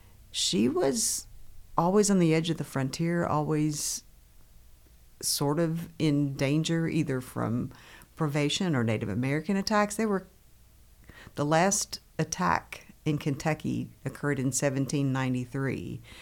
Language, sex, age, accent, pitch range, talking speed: English, female, 50-69, American, 130-165 Hz, 115 wpm